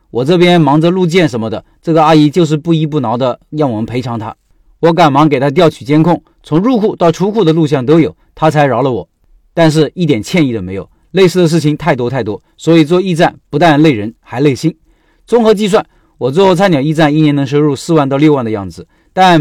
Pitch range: 140-170 Hz